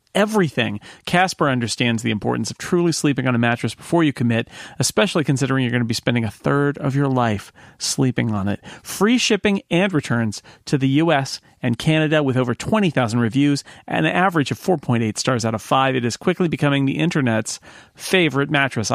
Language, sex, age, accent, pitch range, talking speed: English, male, 40-59, American, 120-160 Hz, 185 wpm